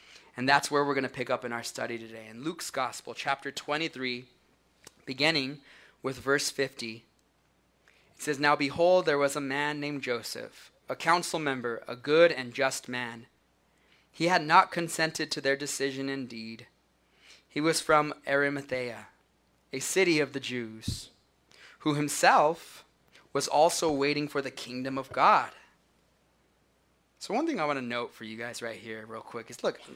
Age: 20-39